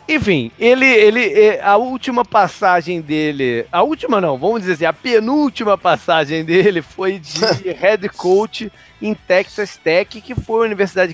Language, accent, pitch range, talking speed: Portuguese, Brazilian, 135-205 Hz, 150 wpm